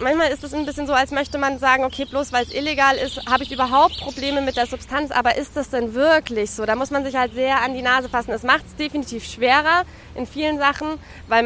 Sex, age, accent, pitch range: female, 20-39, German, 235-280 Hz